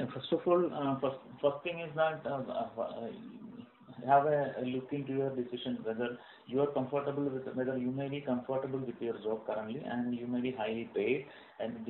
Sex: male